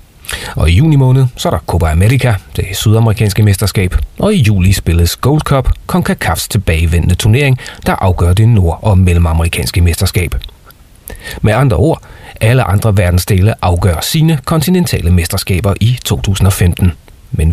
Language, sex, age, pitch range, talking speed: Danish, male, 30-49, 90-120 Hz, 140 wpm